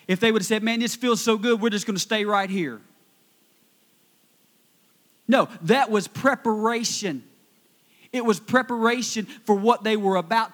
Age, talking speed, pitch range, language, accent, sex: 40-59, 165 wpm, 175-225 Hz, English, American, male